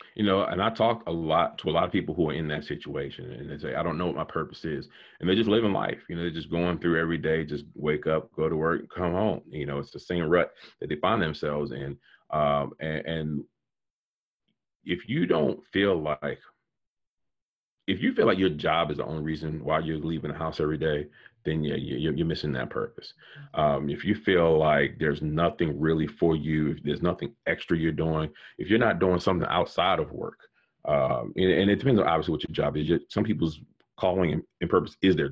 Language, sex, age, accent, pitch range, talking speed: English, male, 40-59, American, 75-90 Hz, 225 wpm